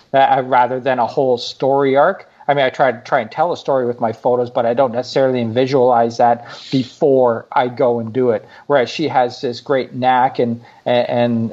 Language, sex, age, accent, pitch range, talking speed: English, male, 40-59, American, 120-140 Hz, 210 wpm